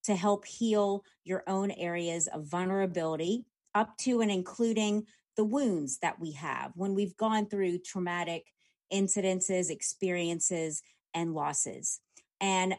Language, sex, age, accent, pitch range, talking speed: English, female, 30-49, American, 175-210 Hz, 125 wpm